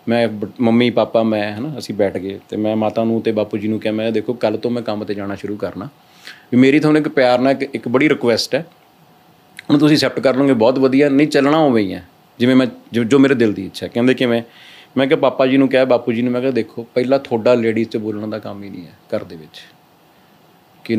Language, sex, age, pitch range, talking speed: Punjabi, male, 30-49, 115-145 Hz, 245 wpm